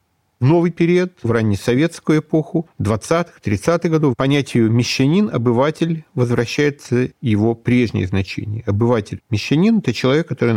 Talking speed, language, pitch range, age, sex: 100 wpm, Russian, 110-155 Hz, 40-59, male